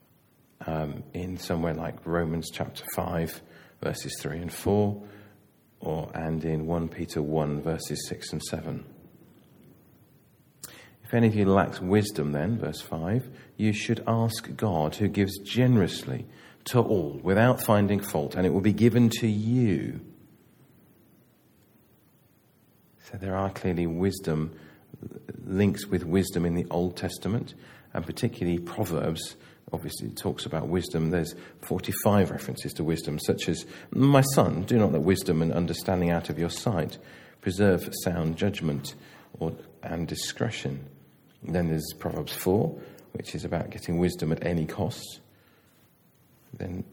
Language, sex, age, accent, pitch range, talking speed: English, male, 40-59, British, 80-105 Hz, 140 wpm